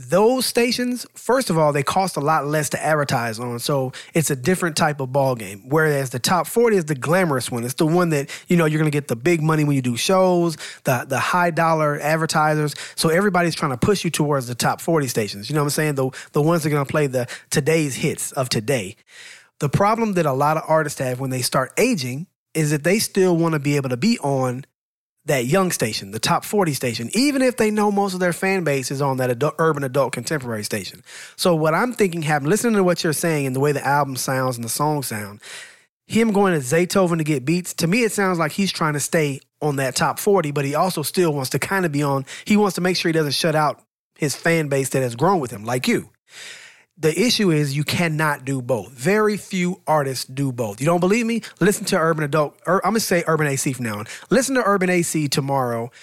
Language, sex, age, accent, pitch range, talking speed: English, male, 30-49, American, 135-180 Hz, 245 wpm